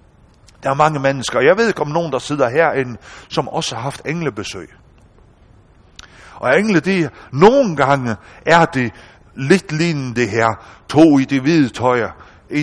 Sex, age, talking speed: male, 60-79, 165 wpm